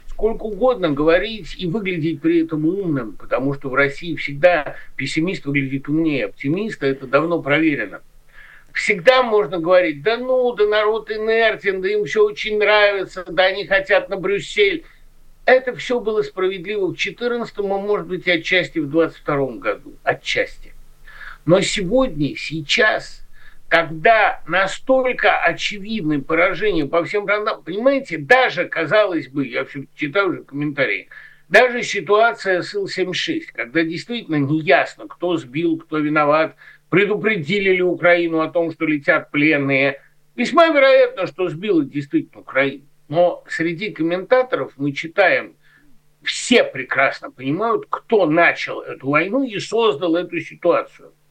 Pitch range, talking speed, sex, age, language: 155-220 Hz, 130 wpm, male, 50-69, Russian